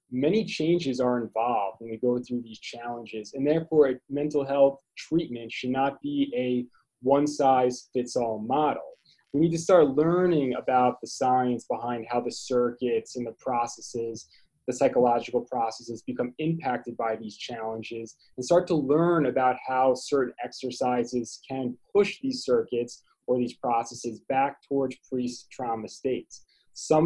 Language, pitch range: English, 120-150 Hz